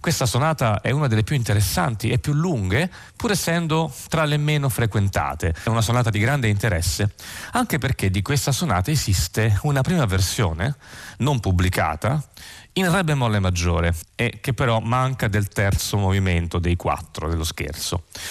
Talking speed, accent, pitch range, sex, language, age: 155 wpm, native, 95-125 Hz, male, Italian, 30-49